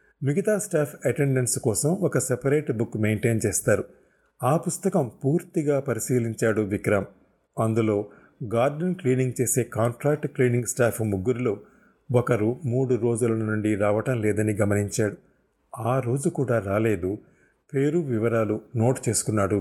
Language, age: Telugu, 30-49